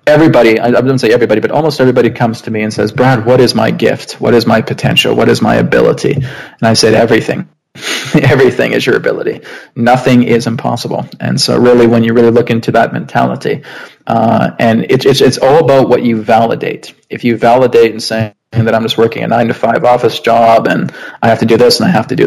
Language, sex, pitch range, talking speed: English, male, 115-125 Hz, 225 wpm